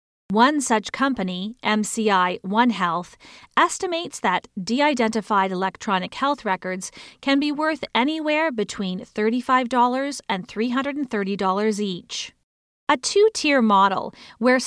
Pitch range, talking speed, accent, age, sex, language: 200-265 Hz, 100 wpm, American, 40-59, female, English